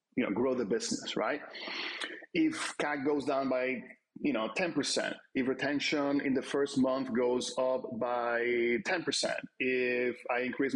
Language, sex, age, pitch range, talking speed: English, male, 40-59, 115-155 Hz, 150 wpm